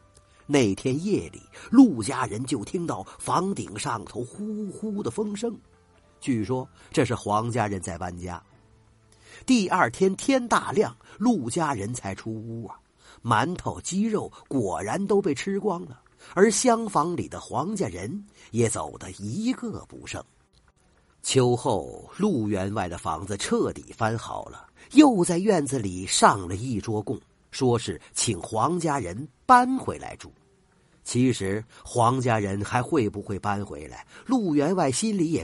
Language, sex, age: Chinese, male, 50-69